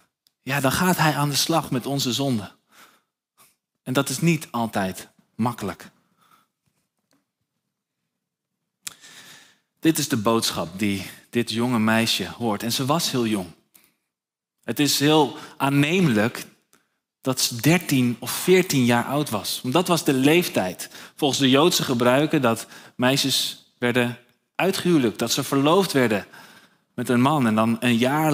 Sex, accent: male, Dutch